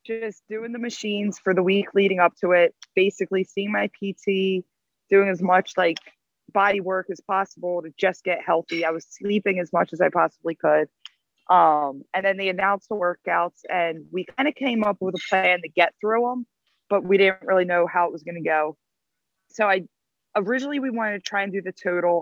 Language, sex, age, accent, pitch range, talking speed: English, female, 20-39, American, 175-205 Hz, 210 wpm